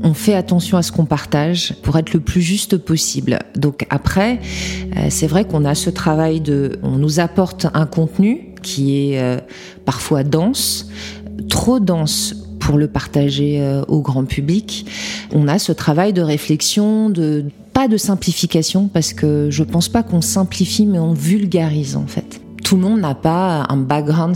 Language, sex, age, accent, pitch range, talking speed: French, female, 40-59, French, 145-185 Hz, 170 wpm